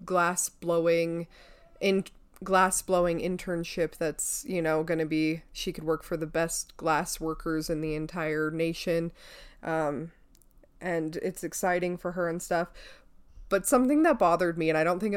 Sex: female